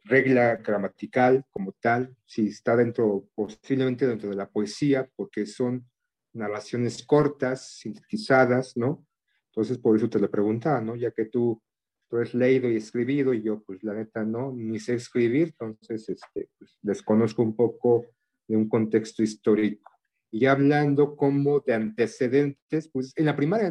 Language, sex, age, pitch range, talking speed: Spanish, male, 40-59, 110-140 Hz, 155 wpm